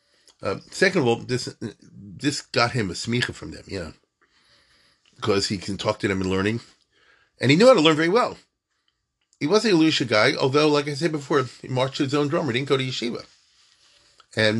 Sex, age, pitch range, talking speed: male, 40-59, 110-150 Hz, 220 wpm